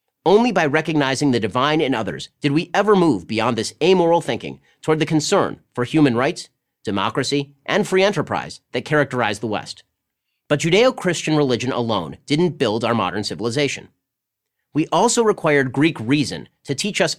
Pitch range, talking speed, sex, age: 125-165 Hz, 160 wpm, male, 40-59